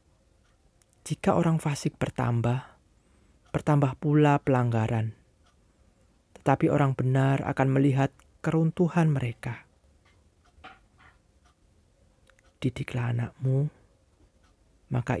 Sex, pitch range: male, 95-135 Hz